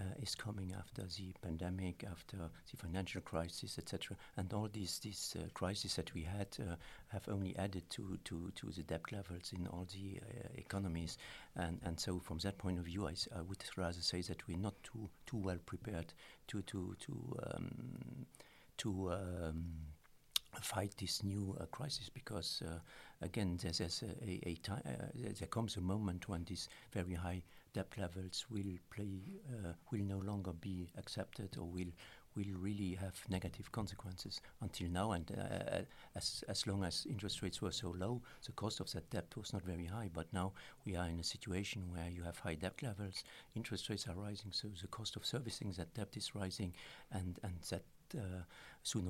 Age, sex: 50-69, male